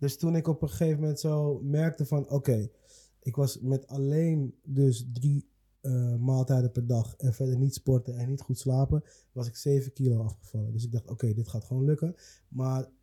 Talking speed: 205 wpm